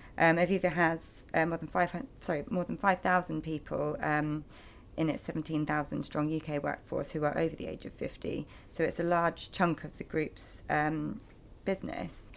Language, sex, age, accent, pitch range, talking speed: English, female, 30-49, British, 150-170 Hz, 190 wpm